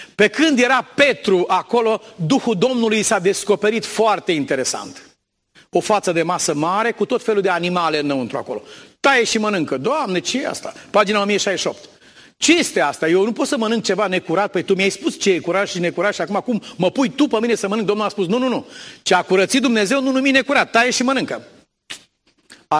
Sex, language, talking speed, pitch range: male, Romanian, 205 wpm, 155-235 Hz